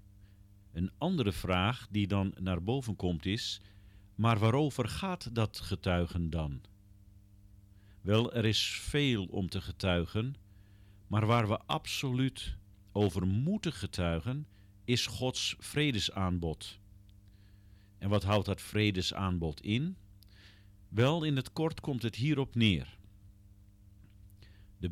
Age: 50-69